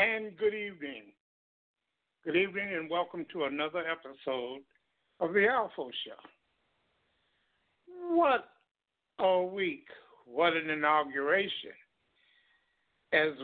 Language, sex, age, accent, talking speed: English, male, 60-79, American, 95 wpm